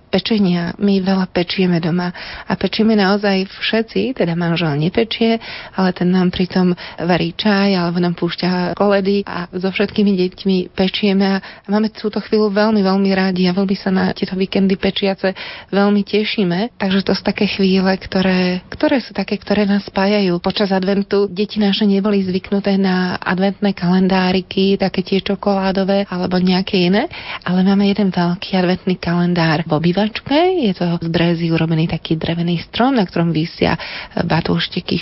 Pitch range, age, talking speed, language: 180-205 Hz, 30-49, 150 wpm, Slovak